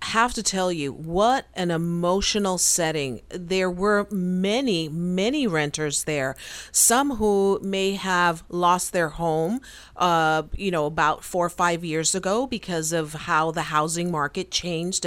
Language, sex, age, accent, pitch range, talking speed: English, female, 40-59, American, 165-205 Hz, 145 wpm